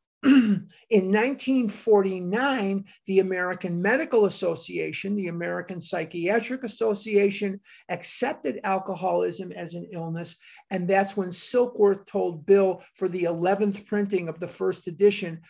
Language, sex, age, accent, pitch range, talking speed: English, male, 50-69, American, 180-220 Hz, 110 wpm